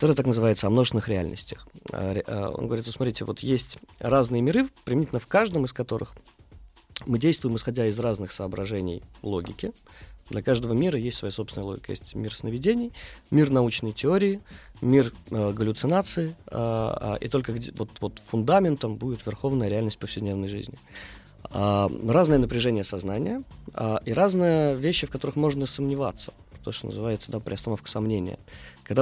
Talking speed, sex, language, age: 145 wpm, male, Russian, 20-39